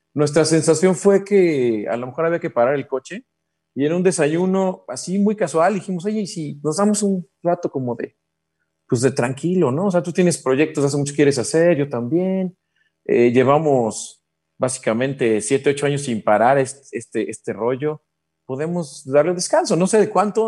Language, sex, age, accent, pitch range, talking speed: Spanish, male, 40-59, Mexican, 115-165 Hz, 180 wpm